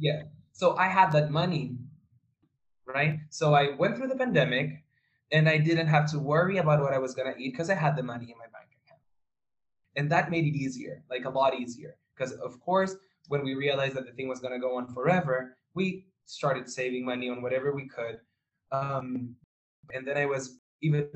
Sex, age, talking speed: male, 10-29, 205 wpm